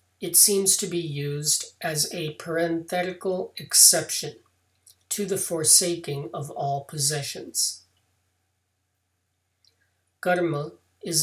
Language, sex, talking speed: English, male, 90 wpm